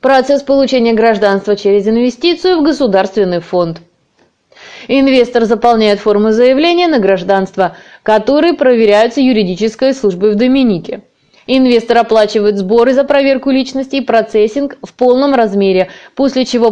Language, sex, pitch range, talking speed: Russian, female, 210-275 Hz, 120 wpm